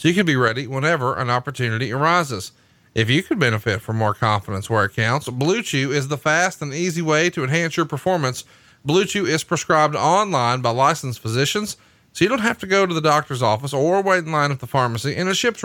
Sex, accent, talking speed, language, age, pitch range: male, American, 225 wpm, English, 40-59, 120-175 Hz